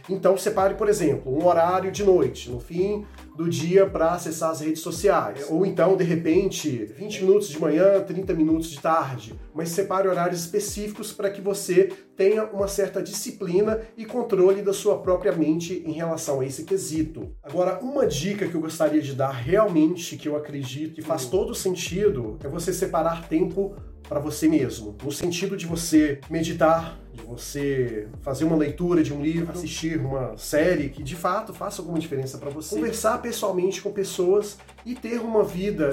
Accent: Brazilian